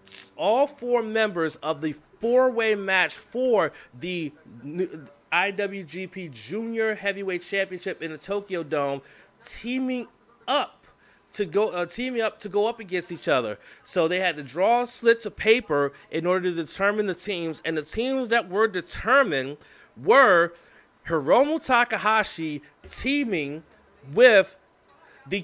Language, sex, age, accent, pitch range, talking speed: English, male, 30-49, American, 150-205 Hz, 130 wpm